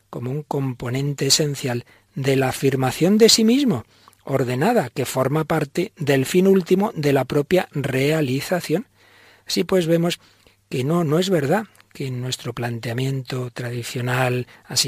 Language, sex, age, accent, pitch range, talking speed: Spanish, male, 40-59, Spanish, 125-165 Hz, 135 wpm